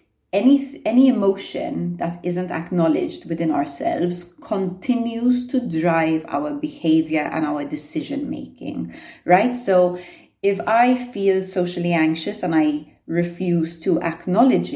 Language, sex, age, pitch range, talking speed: English, female, 30-49, 160-195 Hz, 115 wpm